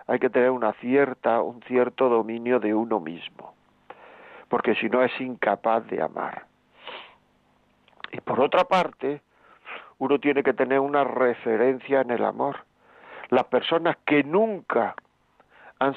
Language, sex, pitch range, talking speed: Spanish, male, 120-145 Hz, 135 wpm